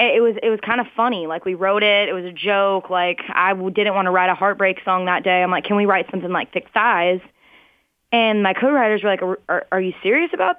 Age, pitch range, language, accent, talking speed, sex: 20-39, 180-220 Hz, English, American, 255 wpm, female